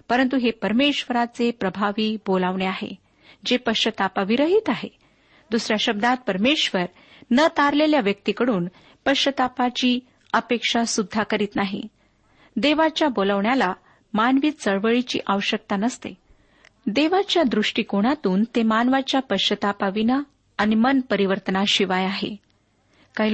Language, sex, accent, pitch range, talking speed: Marathi, female, native, 205-285 Hz, 80 wpm